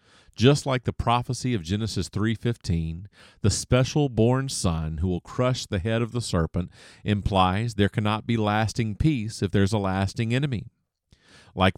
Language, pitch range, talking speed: English, 100-125 Hz, 165 wpm